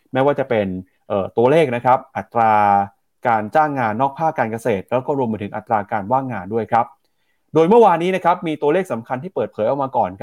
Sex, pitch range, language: male, 120-160 Hz, Thai